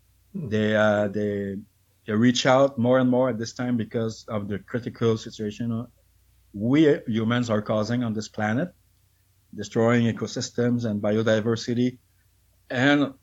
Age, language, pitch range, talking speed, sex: 50-69, English, 105-130 Hz, 130 wpm, male